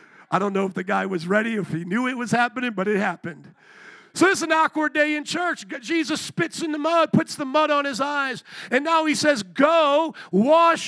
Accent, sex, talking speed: American, male, 230 wpm